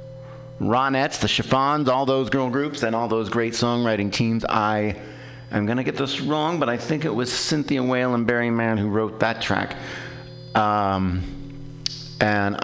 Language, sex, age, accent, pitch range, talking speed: English, male, 50-69, American, 105-135 Hz, 170 wpm